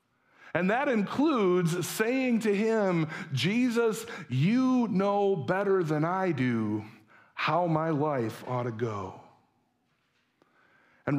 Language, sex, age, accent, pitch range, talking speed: English, male, 50-69, American, 155-225 Hz, 105 wpm